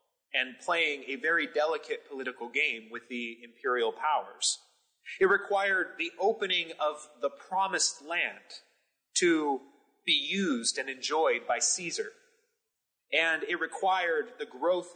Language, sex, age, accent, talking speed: English, male, 30-49, American, 125 wpm